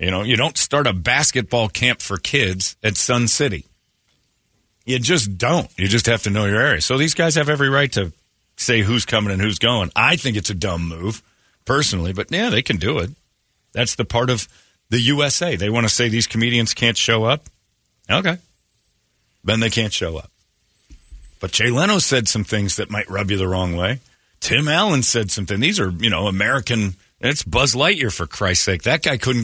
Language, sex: English, male